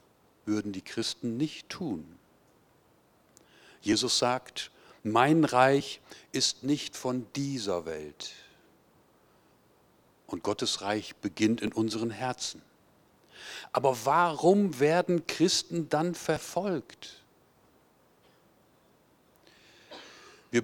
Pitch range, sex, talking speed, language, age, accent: 110-145 Hz, male, 80 wpm, German, 50-69, German